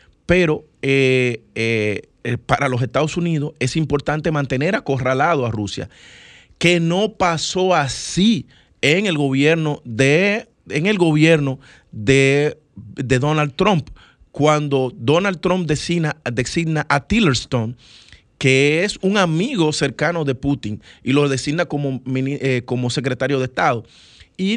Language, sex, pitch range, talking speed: Spanish, male, 125-160 Hz, 115 wpm